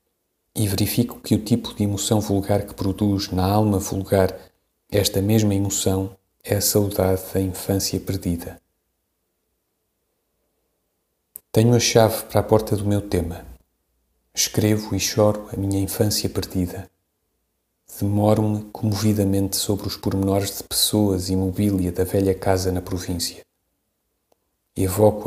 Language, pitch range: Portuguese, 95-105 Hz